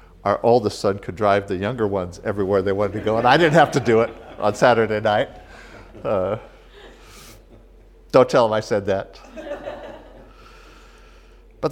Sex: male